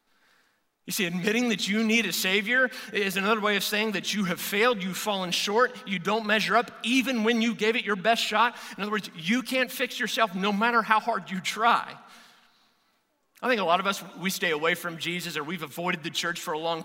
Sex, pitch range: male, 190-240 Hz